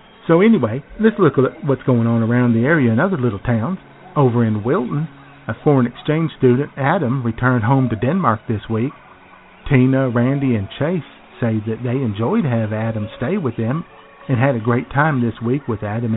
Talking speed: 190 wpm